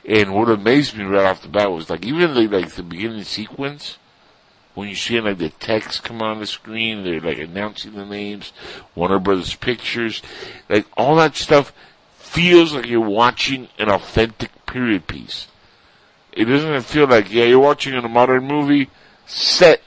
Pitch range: 95-115 Hz